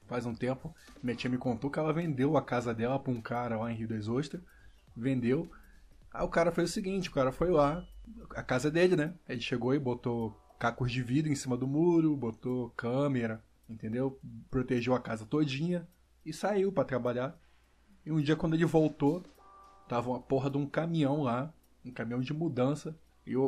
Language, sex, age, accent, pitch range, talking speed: Portuguese, male, 20-39, Brazilian, 130-165 Hz, 195 wpm